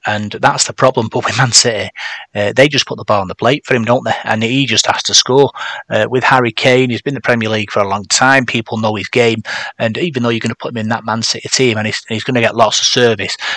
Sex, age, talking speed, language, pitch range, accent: male, 30-49, 300 wpm, English, 110-130 Hz, British